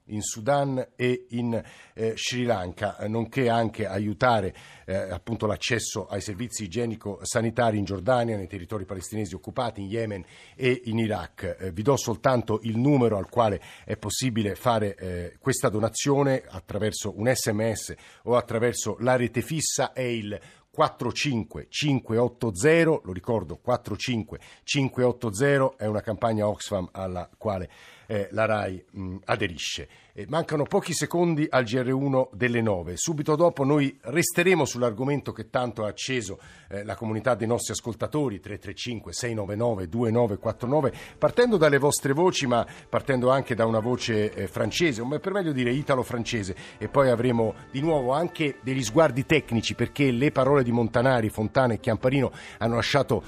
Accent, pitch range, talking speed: native, 105-130 Hz, 140 wpm